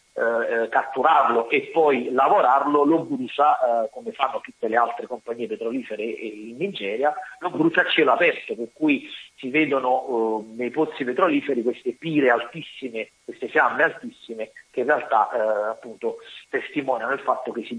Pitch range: 115-180 Hz